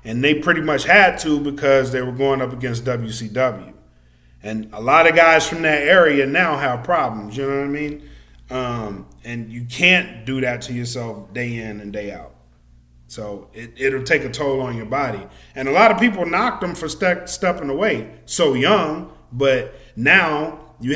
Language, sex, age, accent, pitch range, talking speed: English, male, 30-49, American, 115-150 Hz, 190 wpm